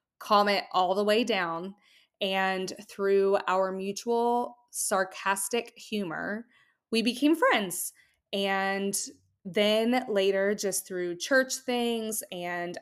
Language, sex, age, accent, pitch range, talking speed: English, female, 20-39, American, 185-215 Hz, 110 wpm